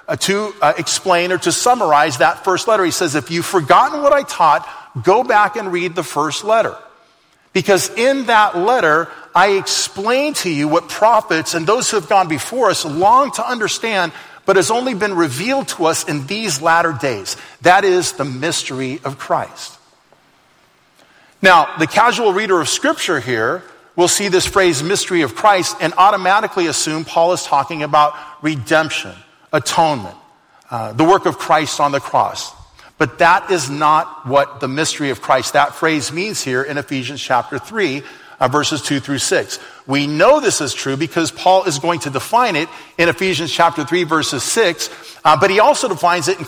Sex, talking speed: male, 180 wpm